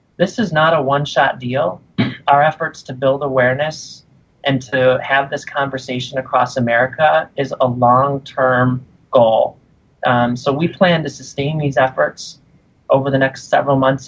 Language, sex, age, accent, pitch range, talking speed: English, male, 30-49, American, 125-140 Hz, 150 wpm